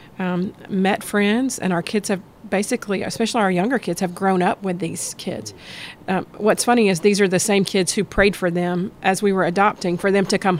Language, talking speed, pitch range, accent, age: English, 220 wpm, 185-205 Hz, American, 40-59